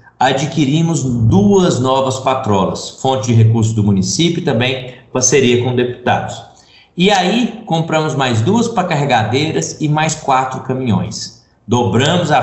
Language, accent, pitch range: Portuguese, Brazilian, 115-170 Hz